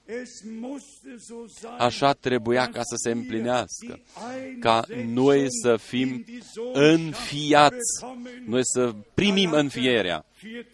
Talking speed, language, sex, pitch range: 85 wpm, Romanian, male, 115-185 Hz